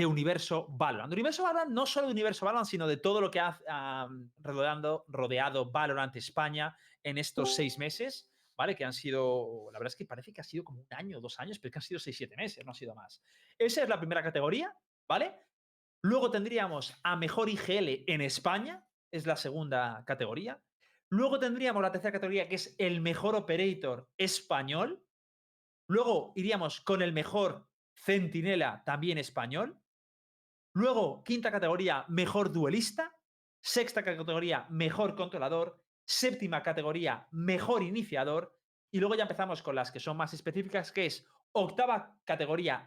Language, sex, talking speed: Spanish, male, 160 wpm